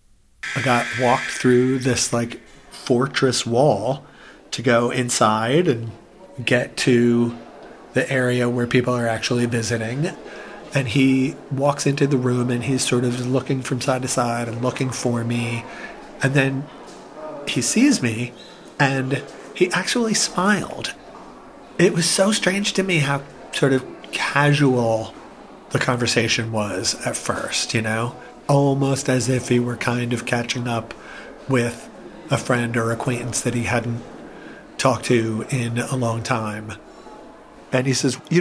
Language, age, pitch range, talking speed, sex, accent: English, 30-49, 120-140 Hz, 145 wpm, male, American